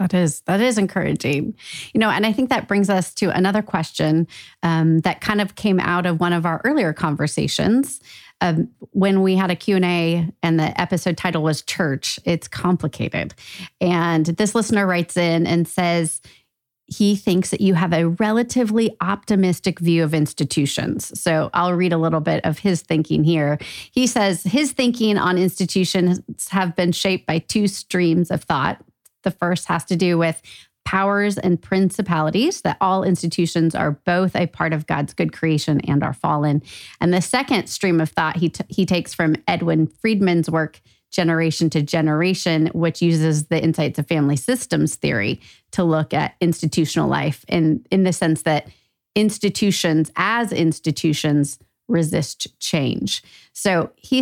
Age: 30-49